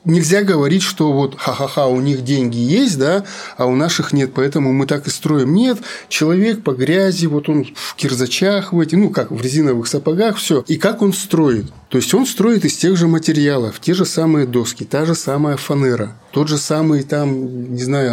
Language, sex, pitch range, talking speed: Russian, male, 130-170 Hz, 205 wpm